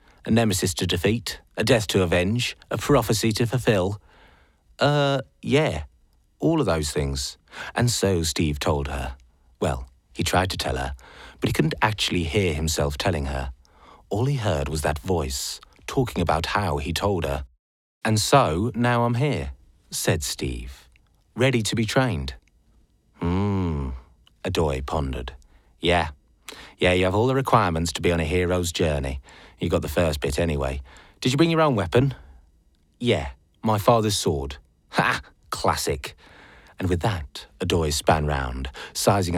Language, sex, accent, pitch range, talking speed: English, male, British, 75-115 Hz, 155 wpm